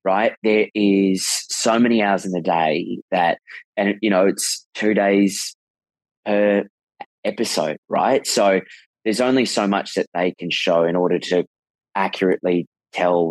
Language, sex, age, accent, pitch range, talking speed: English, male, 20-39, Australian, 90-105 Hz, 150 wpm